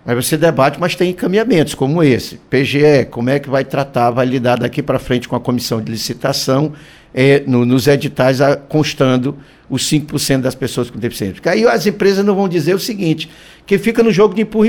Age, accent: 60-79, Brazilian